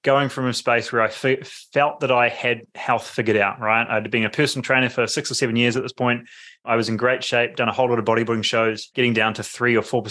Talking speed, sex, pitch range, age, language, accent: 260 wpm, male, 115-135 Hz, 20-39, English, Australian